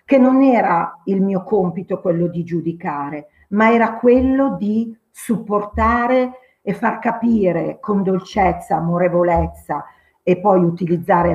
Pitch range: 180-250 Hz